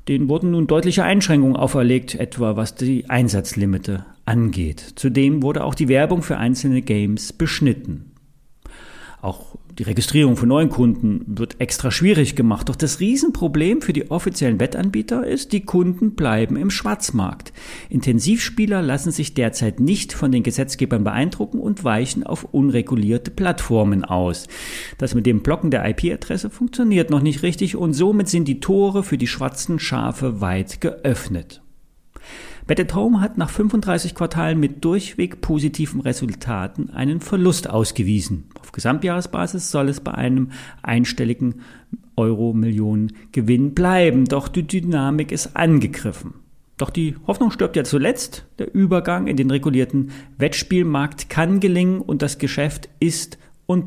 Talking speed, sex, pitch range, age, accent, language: 135 wpm, male, 125-175 Hz, 40-59, German, German